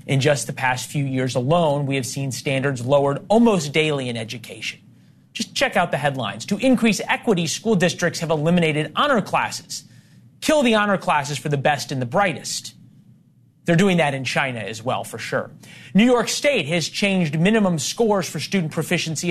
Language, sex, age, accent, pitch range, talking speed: English, male, 30-49, American, 135-190 Hz, 185 wpm